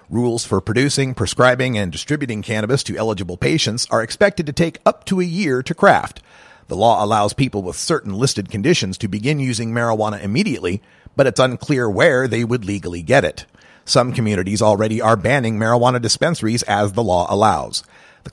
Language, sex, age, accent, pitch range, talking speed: English, male, 40-59, American, 105-140 Hz, 175 wpm